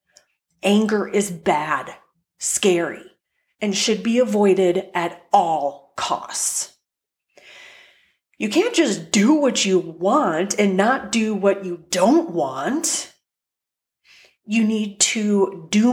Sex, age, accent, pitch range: female, 30-49, American, 185-235 Hz